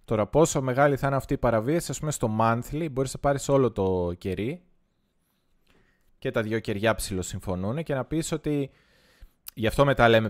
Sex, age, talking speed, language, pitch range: male, 20-39, 180 wpm, Greek, 95-130 Hz